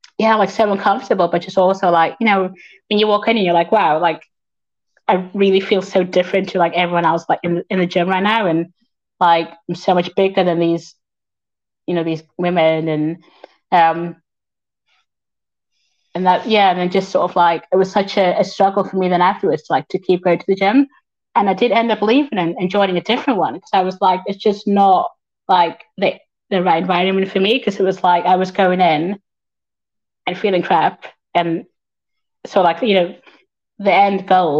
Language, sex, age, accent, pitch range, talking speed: English, female, 20-39, British, 175-200 Hz, 205 wpm